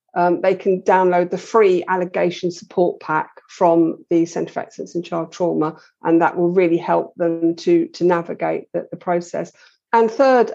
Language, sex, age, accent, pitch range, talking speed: English, female, 50-69, British, 175-210 Hz, 175 wpm